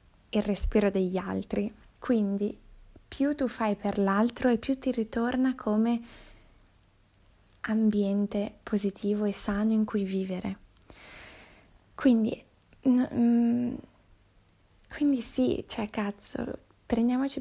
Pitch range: 200-230 Hz